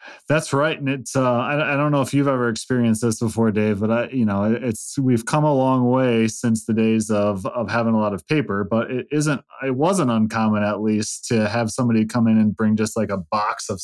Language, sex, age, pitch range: English, male, 20-39, 110-130 Hz